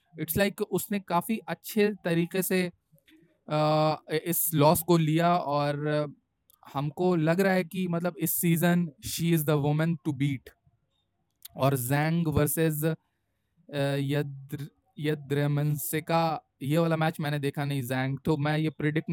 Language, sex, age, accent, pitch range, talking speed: Hindi, male, 20-39, native, 145-170 Hz, 135 wpm